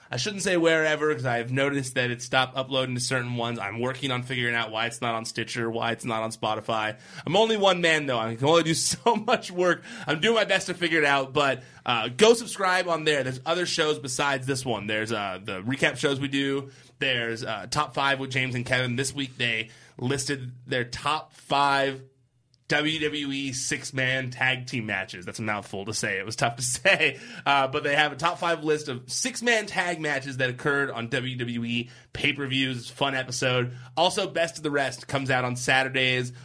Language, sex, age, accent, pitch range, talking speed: English, male, 20-39, American, 125-155 Hz, 210 wpm